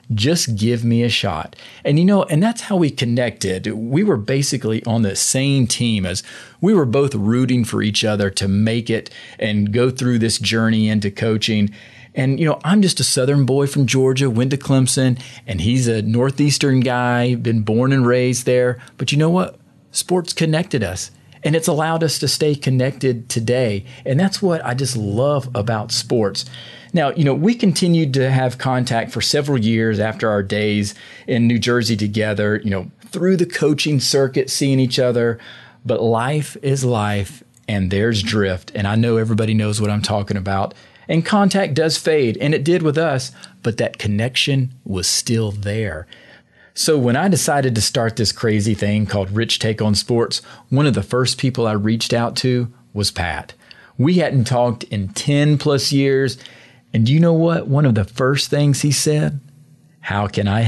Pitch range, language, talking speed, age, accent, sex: 110-145 Hz, English, 185 wpm, 40-59, American, male